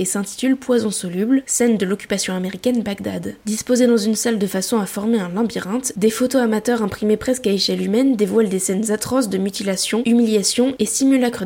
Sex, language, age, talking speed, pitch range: female, French, 10-29, 190 wpm, 205-235 Hz